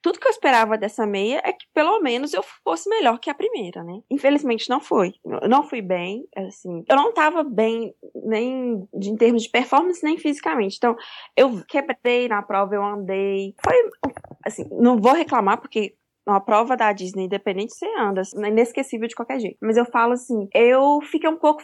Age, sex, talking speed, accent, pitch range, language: 20-39, female, 195 wpm, Brazilian, 210-265 Hz, Portuguese